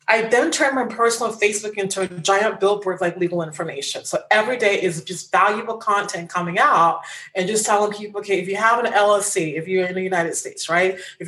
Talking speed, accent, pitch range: 210 wpm, American, 185-225 Hz